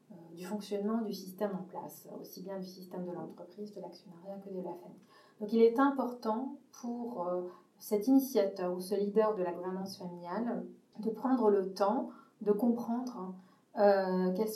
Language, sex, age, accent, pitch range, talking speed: French, female, 20-39, French, 185-220 Hz, 170 wpm